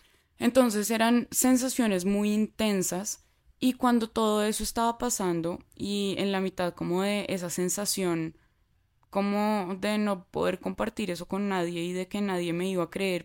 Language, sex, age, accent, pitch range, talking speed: Spanish, female, 20-39, Colombian, 180-215 Hz, 160 wpm